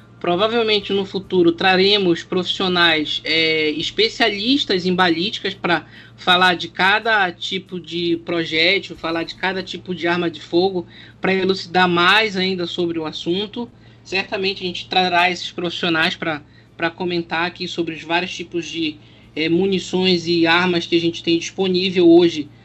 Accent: Brazilian